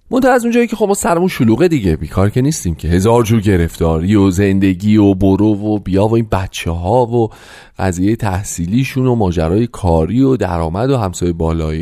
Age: 30-49